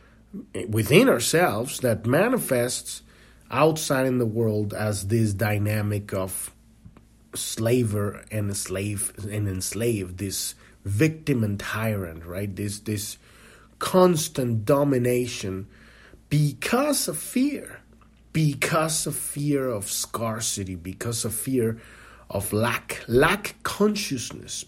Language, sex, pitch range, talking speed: English, male, 110-145 Hz, 100 wpm